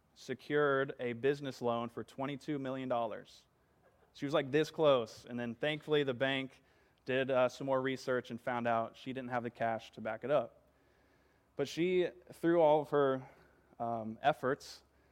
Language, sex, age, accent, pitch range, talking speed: English, male, 20-39, American, 120-140 Hz, 165 wpm